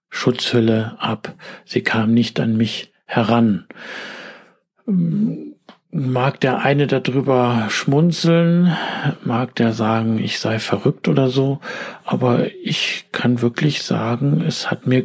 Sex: male